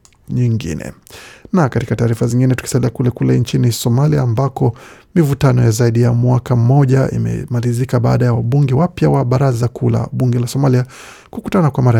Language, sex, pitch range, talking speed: Swahili, male, 120-140 Hz, 165 wpm